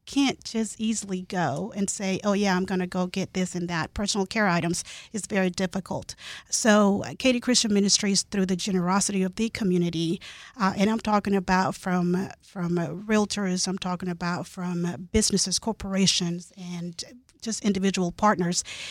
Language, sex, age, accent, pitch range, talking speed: English, female, 40-59, American, 185-235 Hz, 160 wpm